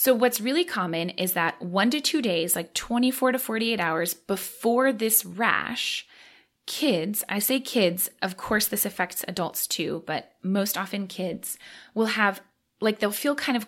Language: English